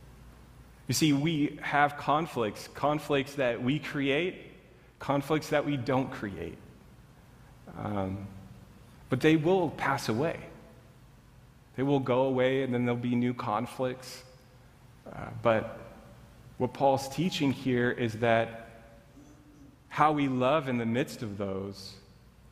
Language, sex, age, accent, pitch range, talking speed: English, male, 30-49, American, 115-140 Hz, 125 wpm